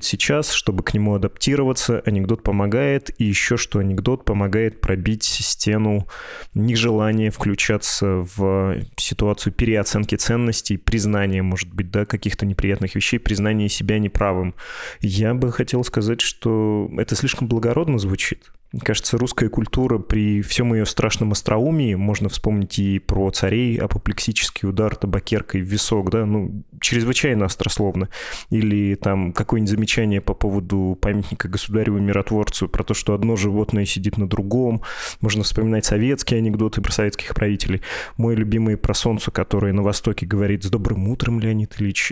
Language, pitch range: Russian, 100-115 Hz